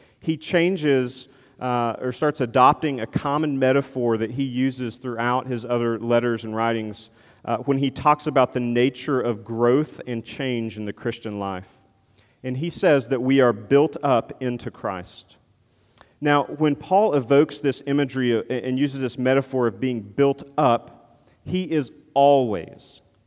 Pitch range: 120-150 Hz